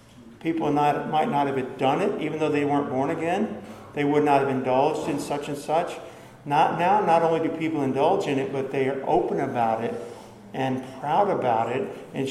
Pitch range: 135-170 Hz